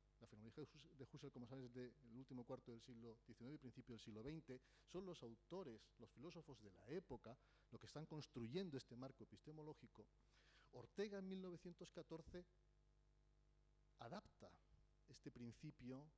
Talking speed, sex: 145 wpm, male